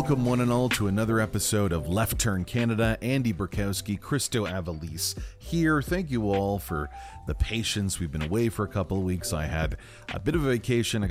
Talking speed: 205 wpm